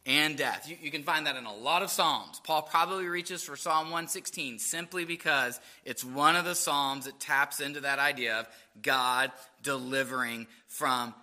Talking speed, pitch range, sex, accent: 180 wpm, 140-195 Hz, male, American